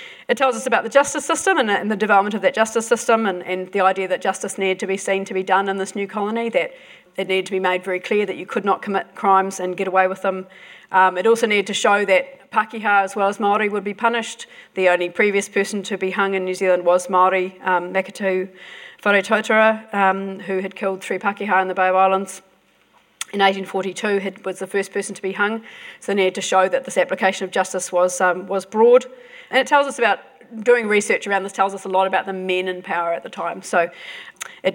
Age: 40-59